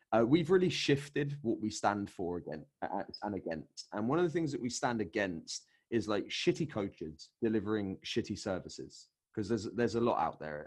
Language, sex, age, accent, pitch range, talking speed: English, male, 20-39, British, 100-135 Hz, 190 wpm